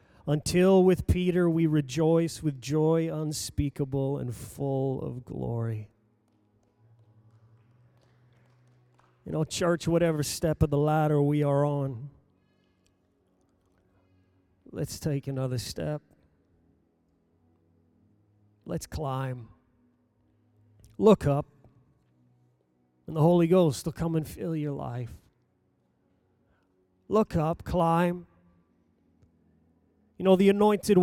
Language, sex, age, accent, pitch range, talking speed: English, male, 40-59, American, 105-175 Hz, 95 wpm